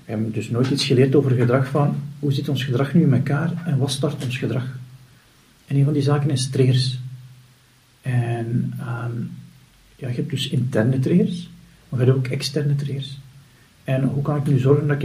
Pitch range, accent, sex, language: 130-150 Hz, Dutch, male, Dutch